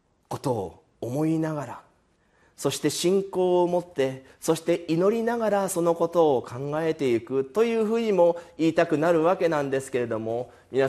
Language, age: Japanese, 40-59